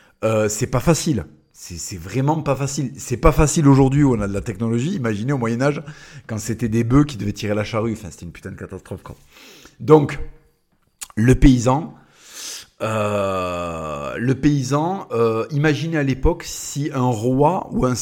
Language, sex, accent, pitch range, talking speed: French, male, French, 110-150 Hz, 175 wpm